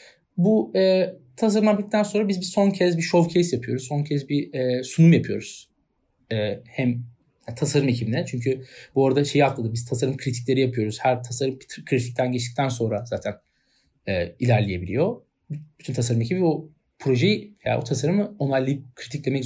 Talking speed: 150 wpm